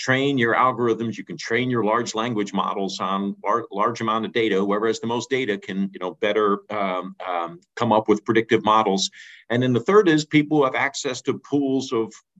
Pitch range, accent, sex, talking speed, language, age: 100-130 Hz, American, male, 210 wpm, English, 50-69